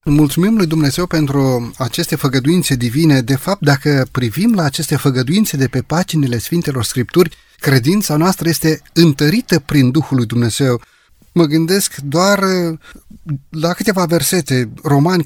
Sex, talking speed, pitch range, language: male, 135 wpm, 145-185 Hz, Romanian